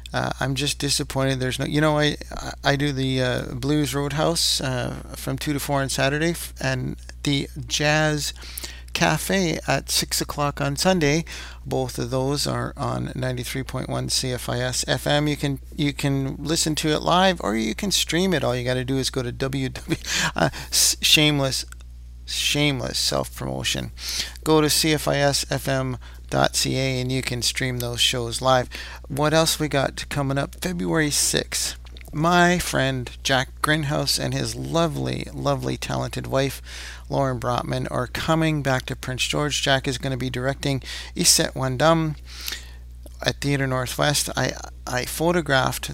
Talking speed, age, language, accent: 150 wpm, 50-69, English, American